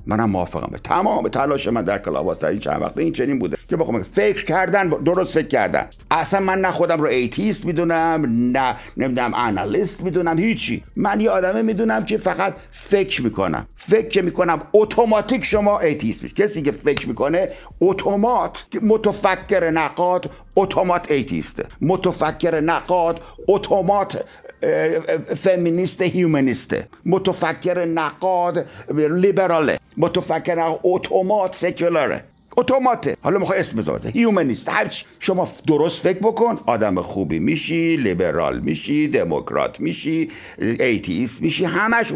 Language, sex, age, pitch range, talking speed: Persian, male, 60-79, 165-205 Hz, 130 wpm